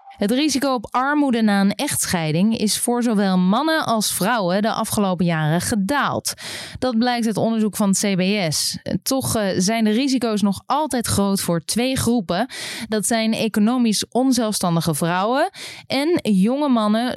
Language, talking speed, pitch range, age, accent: Dutch, 145 wpm, 175-225 Hz, 20-39, Dutch